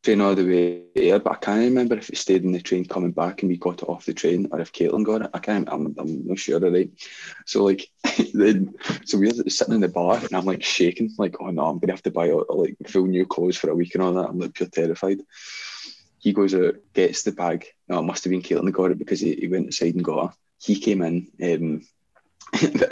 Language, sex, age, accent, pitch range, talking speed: English, male, 20-39, British, 90-125 Hz, 260 wpm